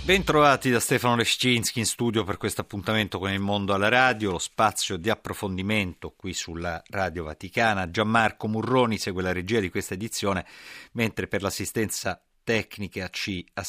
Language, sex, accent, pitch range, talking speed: Italian, male, native, 85-100 Hz, 155 wpm